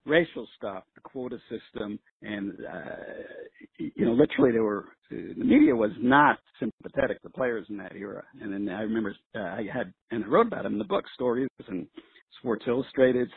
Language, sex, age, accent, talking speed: English, male, 50-69, American, 185 wpm